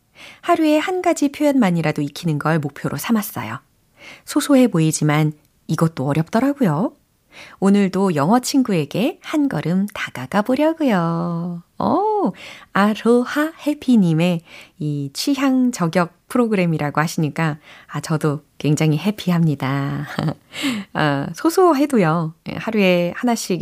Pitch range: 150-235 Hz